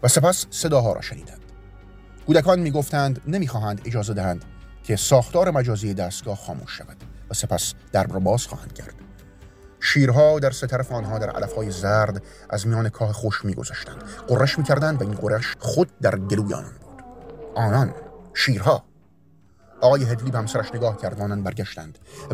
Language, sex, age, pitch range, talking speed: Persian, male, 30-49, 100-135 Hz, 150 wpm